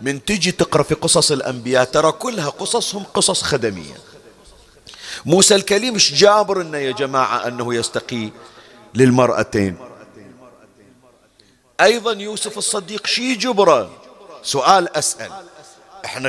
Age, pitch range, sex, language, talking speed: 50-69, 140-170 Hz, male, Arabic, 105 wpm